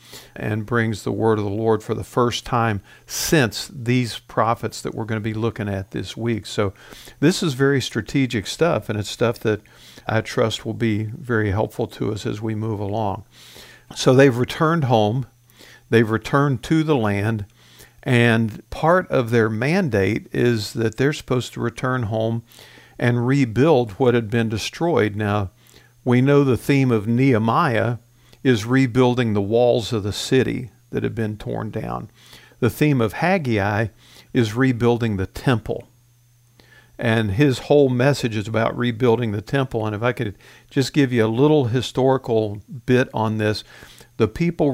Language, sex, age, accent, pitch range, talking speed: English, male, 50-69, American, 110-130 Hz, 165 wpm